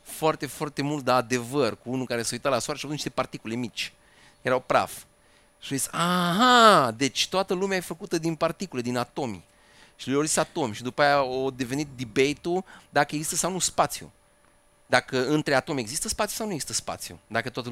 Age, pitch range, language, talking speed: 30-49, 125-160 Hz, Romanian, 195 wpm